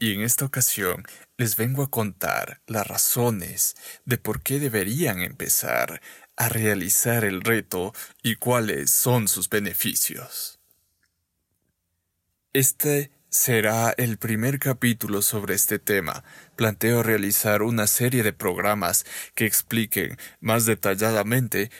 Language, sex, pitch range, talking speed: Spanish, male, 100-120 Hz, 115 wpm